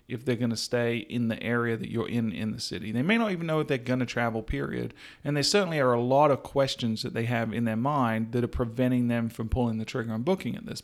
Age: 40-59